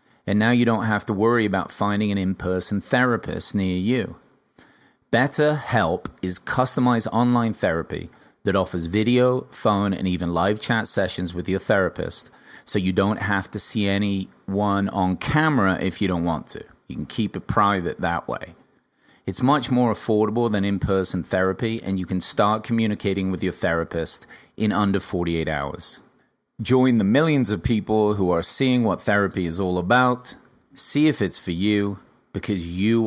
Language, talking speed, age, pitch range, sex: English, 165 wpm, 30-49, 90-115 Hz, male